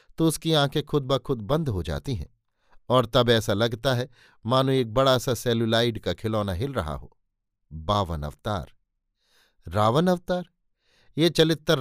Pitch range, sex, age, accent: 110-145 Hz, male, 50-69, native